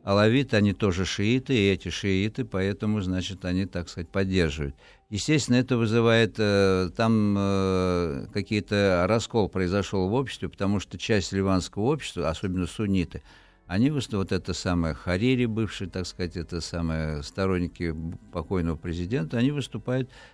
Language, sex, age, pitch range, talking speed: Russian, male, 60-79, 90-110 Hz, 135 wpm